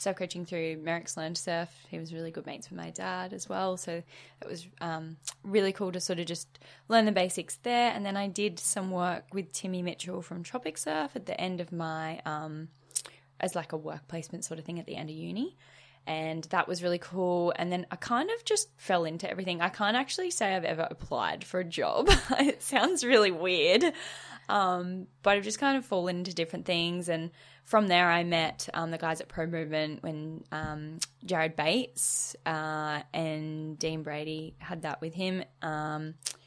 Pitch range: 160-190 Hz